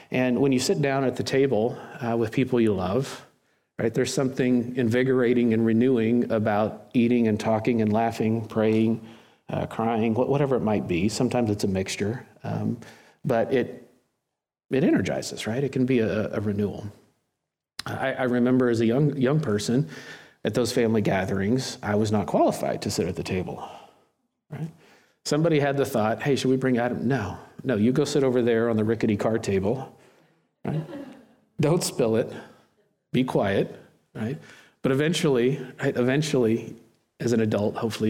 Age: 50-69